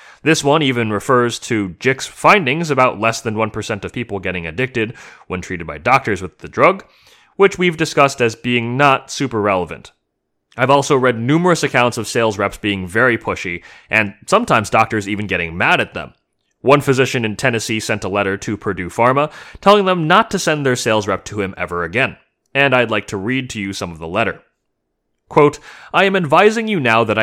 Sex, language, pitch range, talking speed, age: male, English, 105-140 Hz, 195 wpm, 30-49